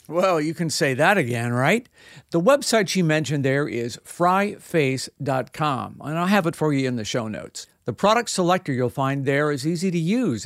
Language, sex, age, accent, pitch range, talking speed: English, male, 50-69, American, 135-180 Hz, 195 wpm